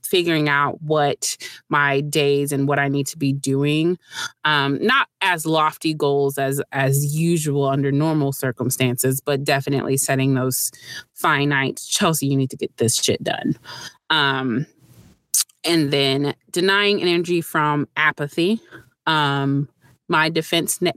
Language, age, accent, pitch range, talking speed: English, 30-49, American, 140-155 Hz, 130 wpm